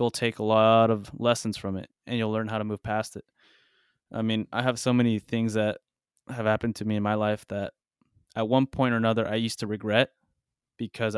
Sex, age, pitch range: male, 20-39, 105-120 Hz